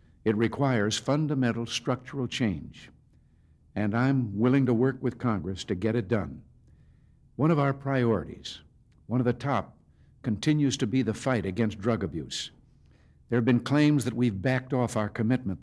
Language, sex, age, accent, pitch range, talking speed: English, male, 60-79, American, 105-130 Hz, 160 wpm